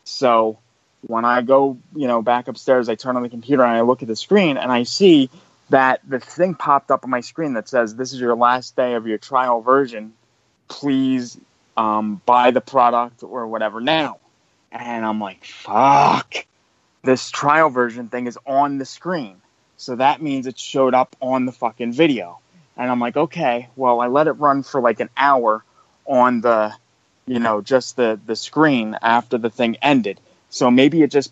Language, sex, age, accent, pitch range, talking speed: English, male, 20-39, American, 115-135 Hz, 190 wpm